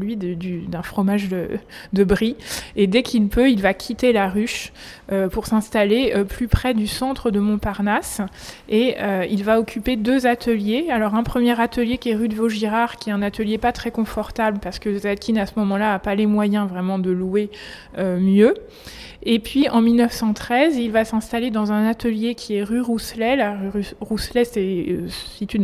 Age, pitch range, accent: 20-39, 200-235 Hz, French